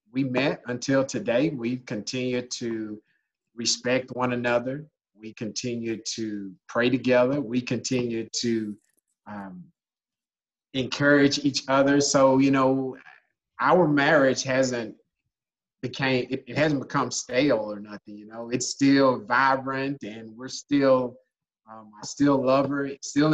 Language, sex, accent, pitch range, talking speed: English, male, American, 120-145 Hz, 130 wpm